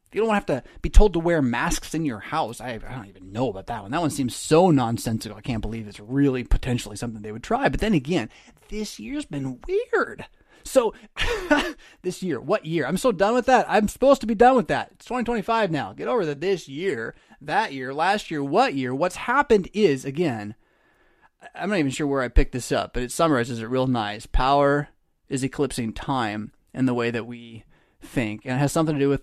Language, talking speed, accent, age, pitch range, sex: English, 225 wpm, American, 30-49, 130-200 Hz, male